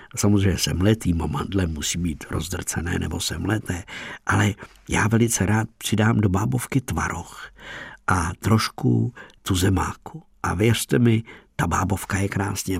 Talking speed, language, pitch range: 120 wpm, Czech, 90-110 Hz